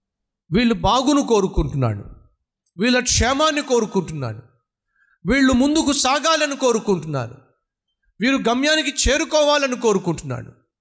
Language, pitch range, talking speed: Telugu, 135-200 Hz, 80 wpm